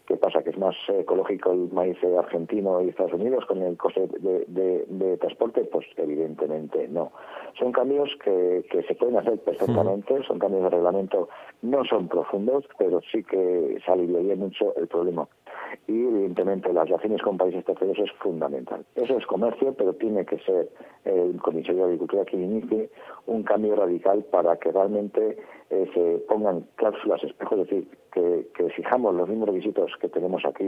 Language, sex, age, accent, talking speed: Spanish, male, 50-69, Spanish, 175 wpm